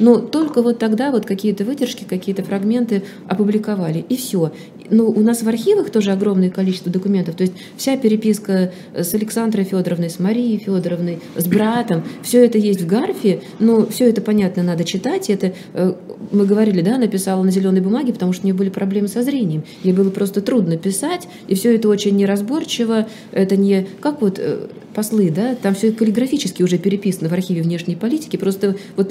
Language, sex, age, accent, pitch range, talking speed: Russian, female, 20-39, native, 190-230 Hz, 180 wpm